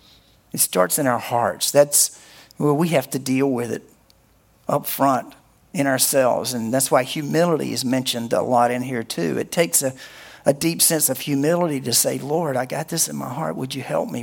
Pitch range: 135-170 Hz